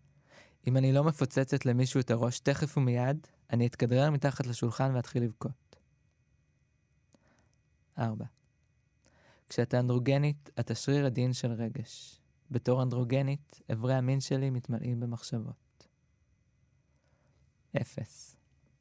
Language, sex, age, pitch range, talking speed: Hebrew, male, 20-39, 120-135 Hz, 100 wpm